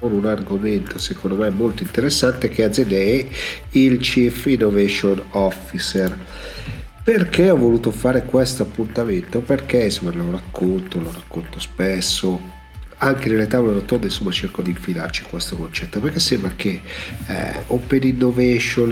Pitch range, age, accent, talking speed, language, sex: 95-125 Hz, 50-69, native, 130 wpm, Italian, male